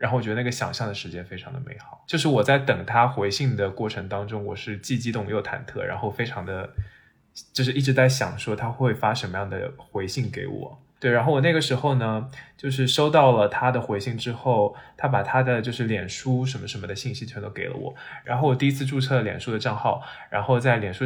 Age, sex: 20-39, male